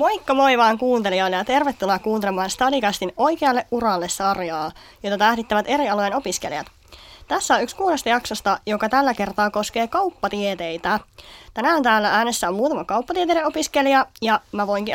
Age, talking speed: 20-39, 145 wpm